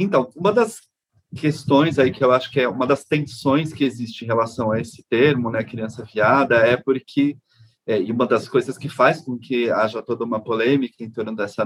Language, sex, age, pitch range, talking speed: Portuguese, male, 30-49, 115-145 Hz, 210 wpm